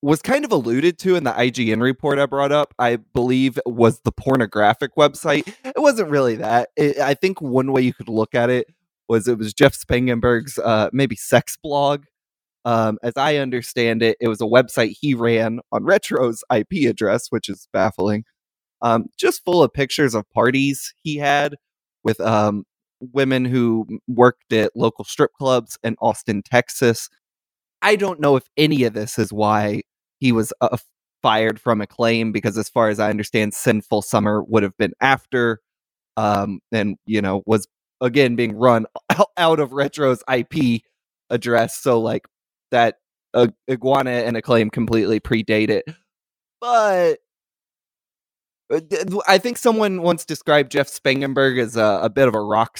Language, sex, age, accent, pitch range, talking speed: English, male, 20-39, American, 115-145 Hz, 165 wpm